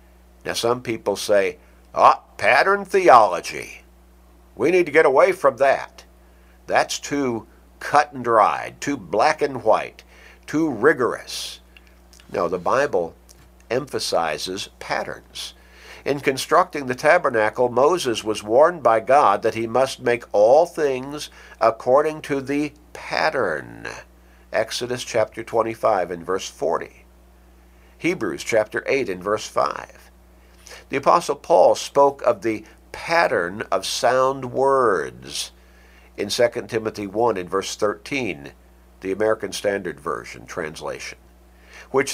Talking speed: 120 wpm